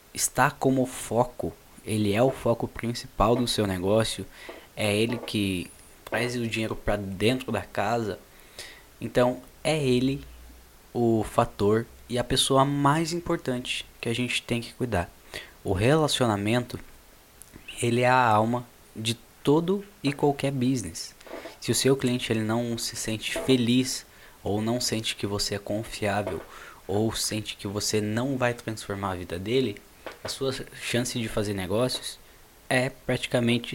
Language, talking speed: Portuguese, 145 wpm